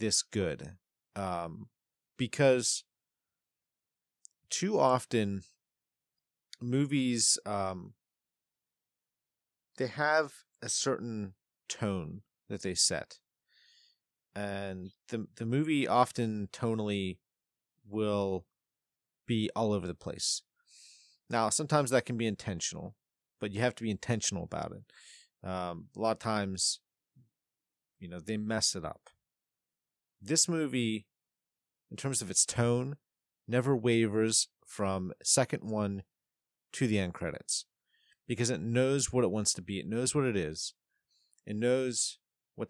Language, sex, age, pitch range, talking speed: English, male, 30-49, 105-135 Hz, 120 wpm